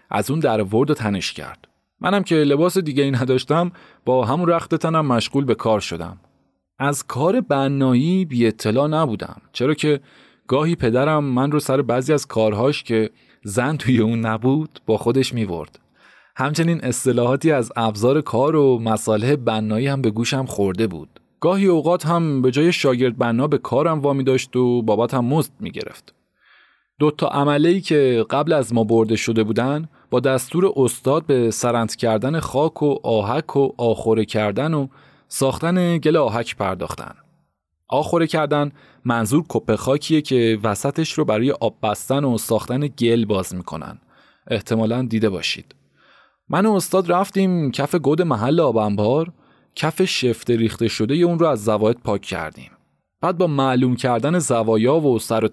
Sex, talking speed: male, 160 wpm